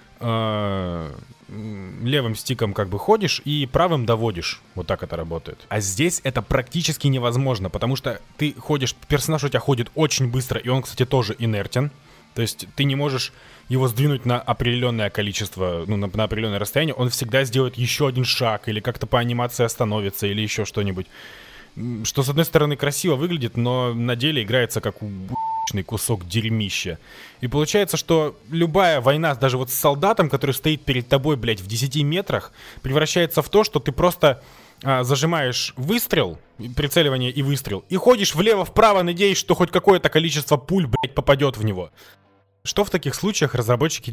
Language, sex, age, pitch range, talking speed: Russian, male, 20-39, 115-150 Hz, 165 wpm